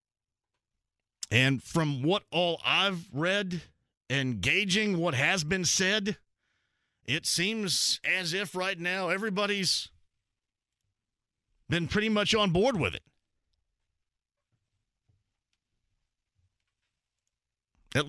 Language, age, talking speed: English, 40-59, 90 wpm